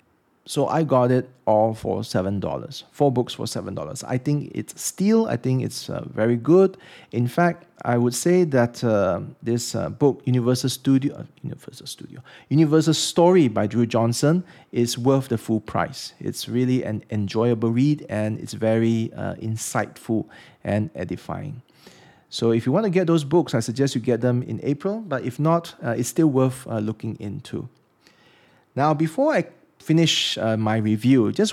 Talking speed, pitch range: 175 wpm, 115-155 Hz